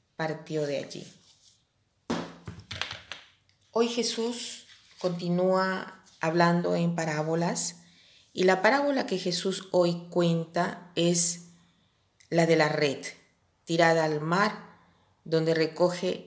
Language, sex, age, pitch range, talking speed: Spanish, female, 40-59, 155-180 Hz, 95 wpm